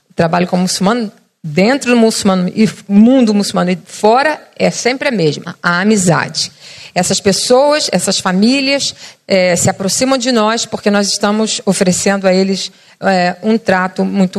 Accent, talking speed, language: Brazilian, 150 wpm, Portuguese